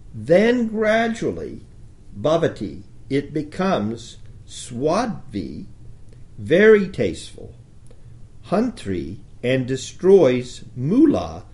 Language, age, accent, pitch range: English, 60-79, American, 105-120 Hz